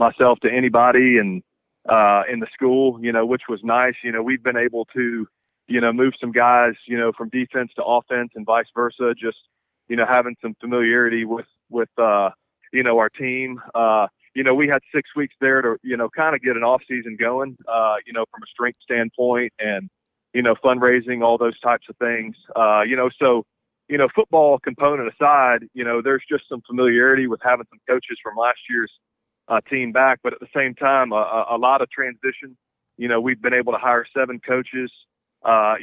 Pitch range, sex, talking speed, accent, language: 115-130 Hz, male, 210 wpm, American, English